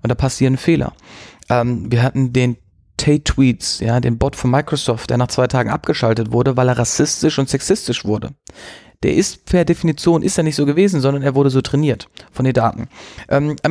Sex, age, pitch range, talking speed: male, 30-49, 130-160 Hz, 195 wpm